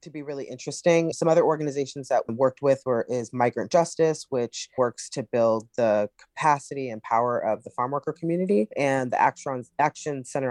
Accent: American